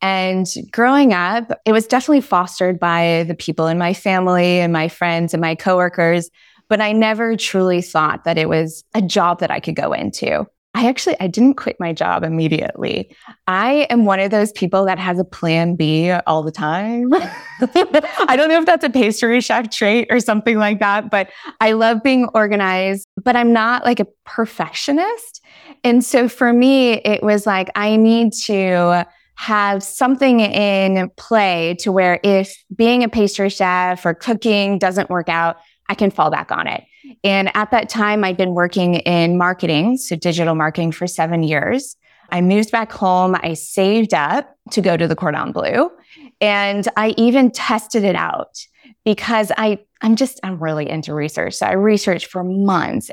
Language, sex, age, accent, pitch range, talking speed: English, female, 20-39, American, 180-235 Hz, 180 wpm